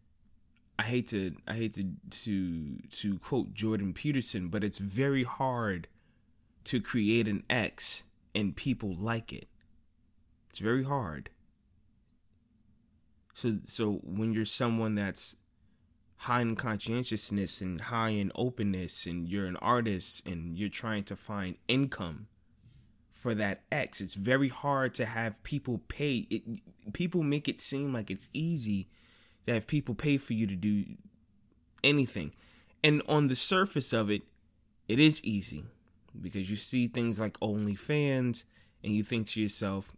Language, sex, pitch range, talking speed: English, male, 100-125 Hz, 145 wpm